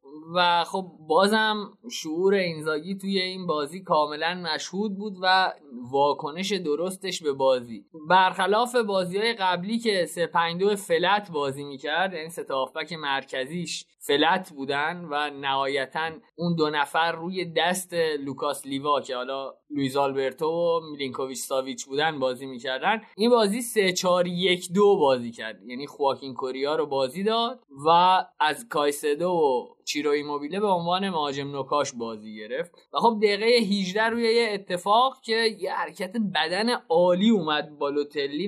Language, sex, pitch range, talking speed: Persian, male, 145-210 Hz, 135 wpm